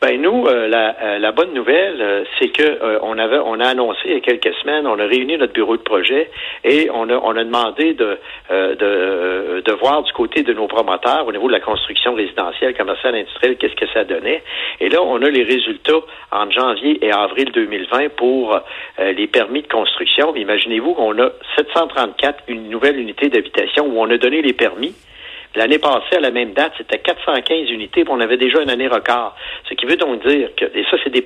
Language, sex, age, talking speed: French, male, 60-79, 220 wpm